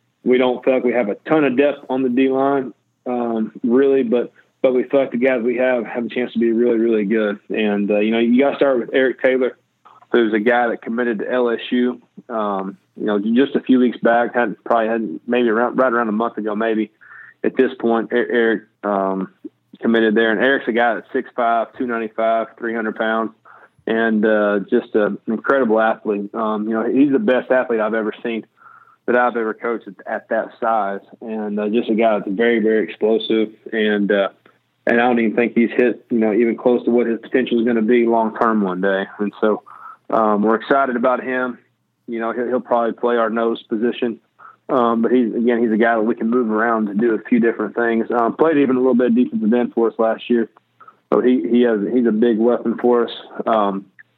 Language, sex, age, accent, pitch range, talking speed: English, male, 20-39, American, 110-125 Hz, 220 wpm